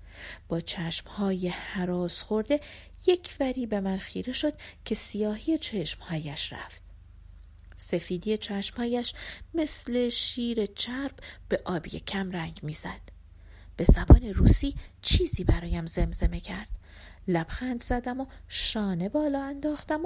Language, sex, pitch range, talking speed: Persian, female, 165-255 Hz, 115 wpm